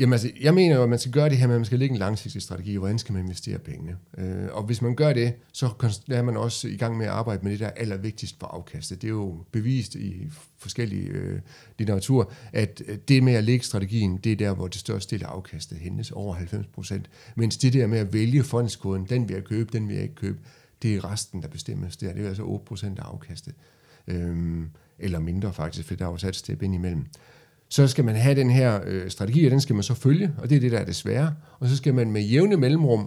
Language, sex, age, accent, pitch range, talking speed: Danish, male, 40-59, native, 100-135 Hz, 250 wpm